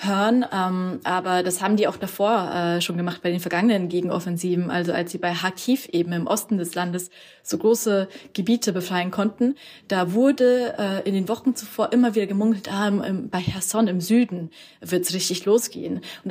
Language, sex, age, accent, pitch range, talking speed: German, female, 20-39, German, 175-215 Hz, 190 wpm